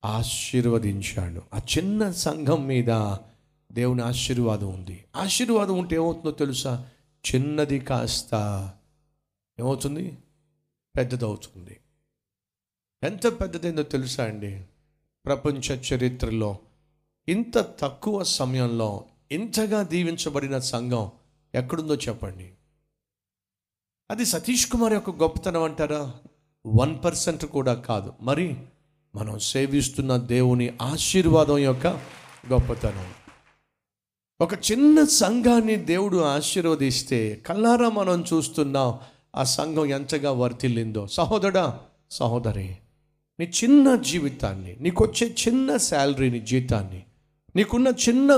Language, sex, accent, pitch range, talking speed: Telugu, male, native, 115-170 Hz, 85 wpm